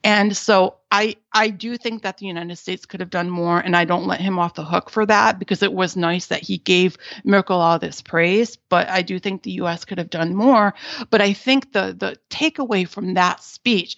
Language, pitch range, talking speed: English, 175-215 Hz, 230 wpm